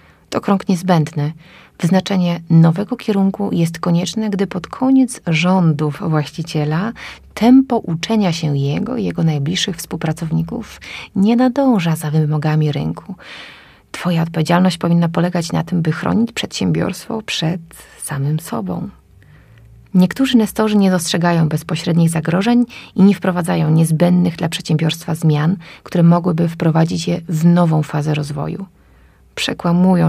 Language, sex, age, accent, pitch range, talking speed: Polish, female, 30-49, native, 160-195 Hz, 120 wpm